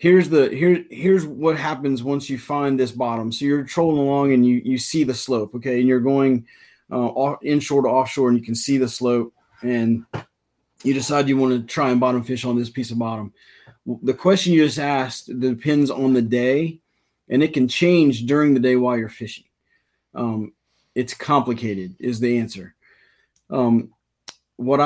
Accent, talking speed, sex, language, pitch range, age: American, 185 wpm, male, English, 120-145 Hz, 30-49